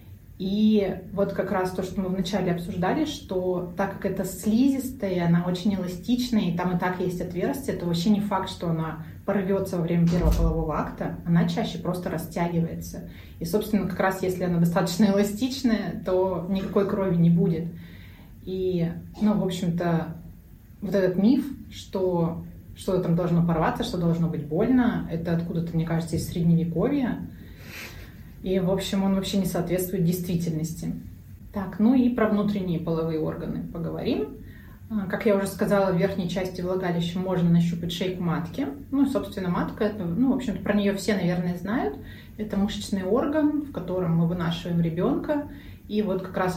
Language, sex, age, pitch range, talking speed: Russian, female, 20-39, 170-205 Hz, 160 wpm